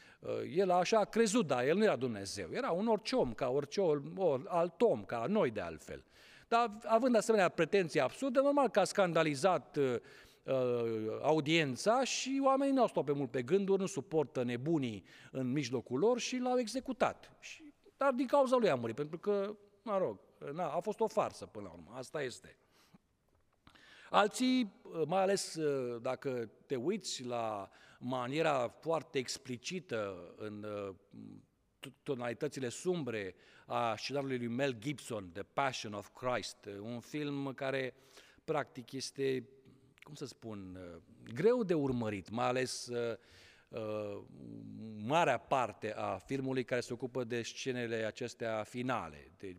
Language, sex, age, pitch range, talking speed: Romanian, male, 50-69, 120-190 Hz, 150 wpm